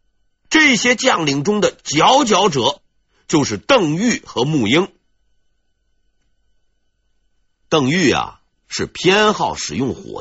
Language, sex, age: Chinese, male, 50-69